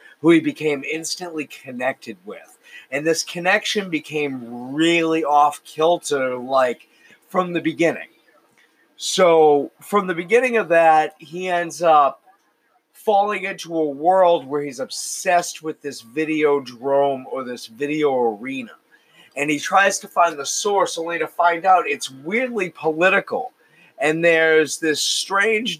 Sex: male